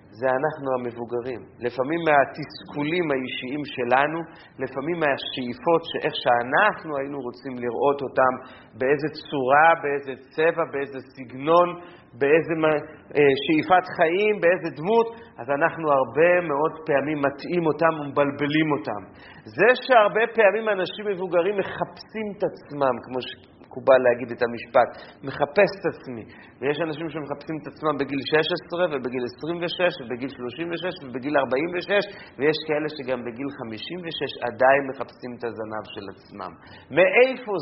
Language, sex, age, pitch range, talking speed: Hebrew, male, 40-59, 130-175 Hz, 120 wpm